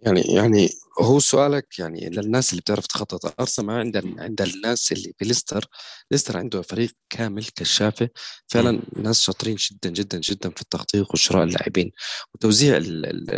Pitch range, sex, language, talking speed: 95-125 Hz, male, Arabic, 150 wpm